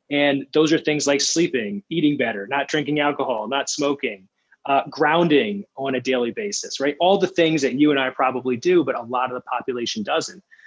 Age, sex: 20-39, male